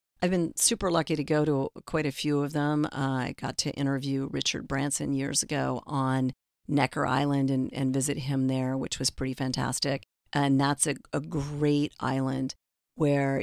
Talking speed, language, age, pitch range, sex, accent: 180 wpm, English, 40-59, 135-150 Hz, female, American